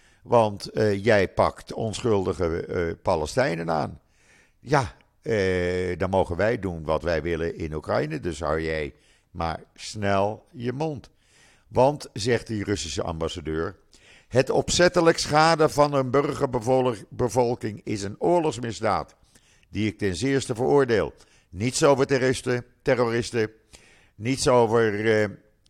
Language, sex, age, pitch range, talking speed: Dutch, male, 50-69, 95-125 Hz, 125 wpm